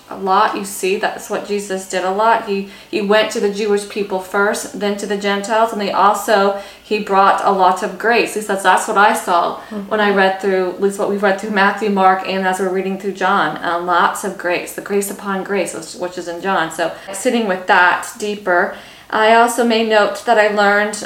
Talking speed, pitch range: 225 wpm, 195-225 Hz